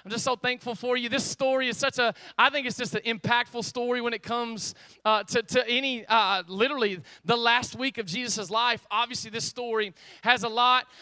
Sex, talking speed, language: male, 210 wpm, English